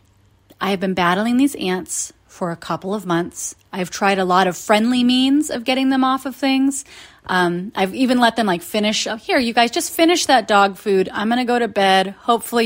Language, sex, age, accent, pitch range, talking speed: English, female, 30-49, American, 185-250 Hz, 220 wpm